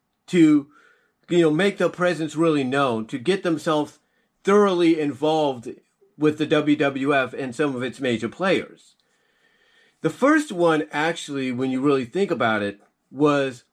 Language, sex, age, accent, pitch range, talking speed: English, male, 40-59, American, 140-185 Hz, 145 wpm